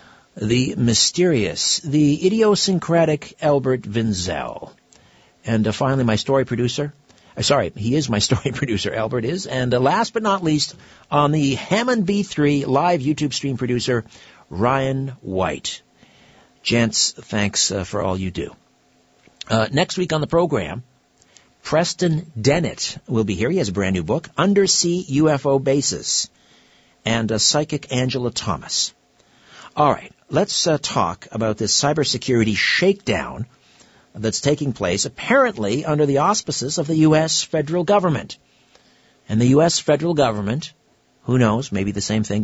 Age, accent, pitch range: 60-79, American, 110-160 Hz